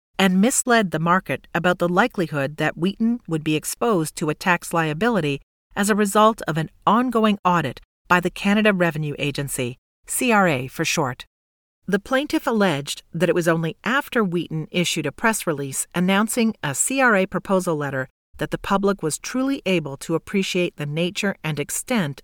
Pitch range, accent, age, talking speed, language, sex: 150-200 Hz, American, 40-59, 165 wpm, English, female